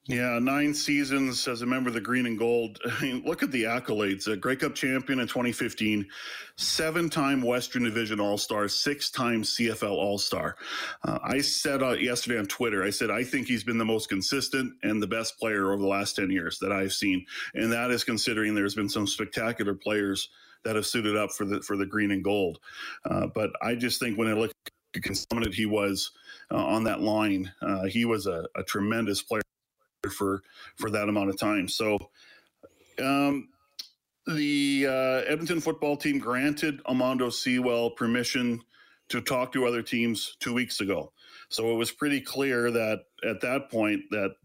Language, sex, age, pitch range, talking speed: English, male, 40-59, 105-125 Hz, 185 wpm